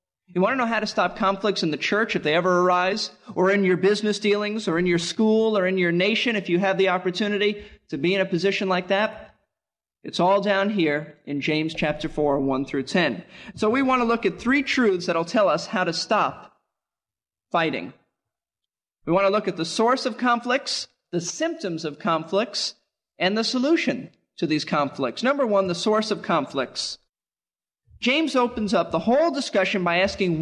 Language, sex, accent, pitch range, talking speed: English, male, American, 175-235 Hz, 195 wpm